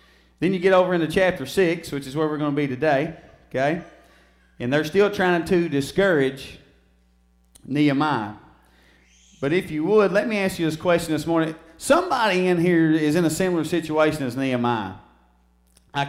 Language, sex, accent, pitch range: English, male, American, 110-155 Hz